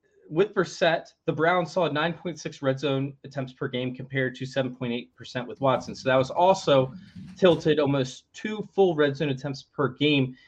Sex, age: male, 20-39